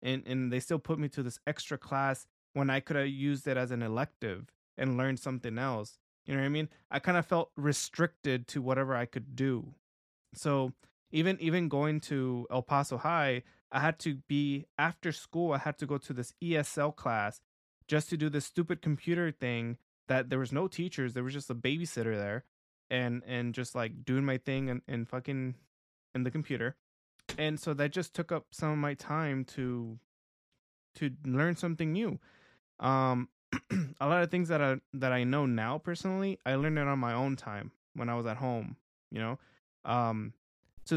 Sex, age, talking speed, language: male, 20-39, 195 wpm, English